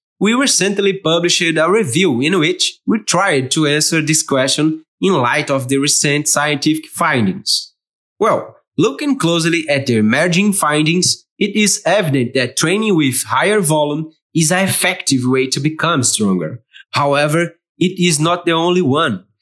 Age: 20-39